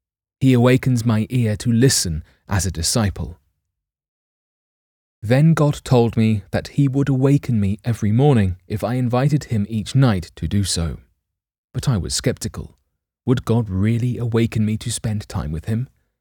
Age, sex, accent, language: 30-49, male, British, English